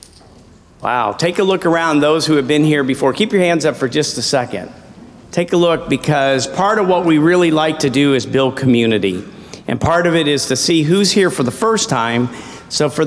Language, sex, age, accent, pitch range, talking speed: English, male, 50-69, American, 125-165 Hz, 225 wpm